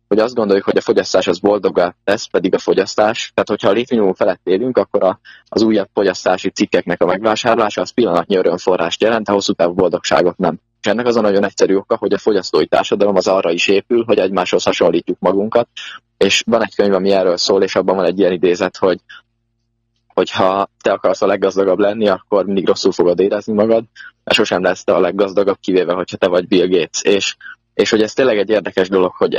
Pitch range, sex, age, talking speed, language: 95-115 Hz, male, 20-39, 205 wpm, Hungarian